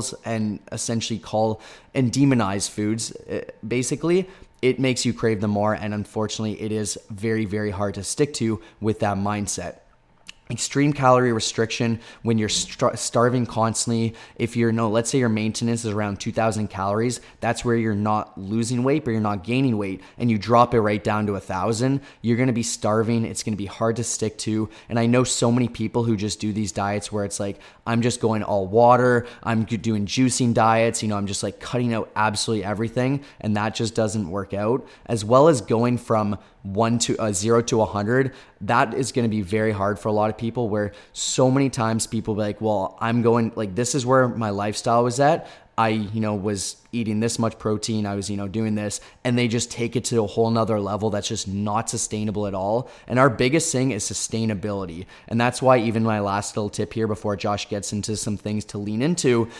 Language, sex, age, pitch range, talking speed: English, male, 20-39, 105-120 Hz, 210 wpm